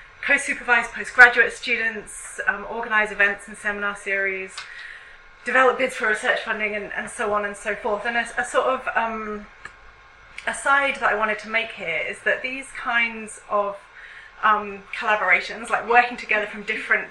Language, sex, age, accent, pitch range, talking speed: English, female, 30-49, British, 205-235 Hz, 160 wpm